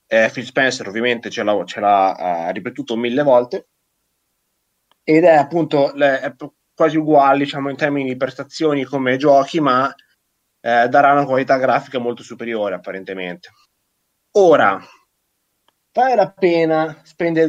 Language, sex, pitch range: Italian, male, 130-155 Hz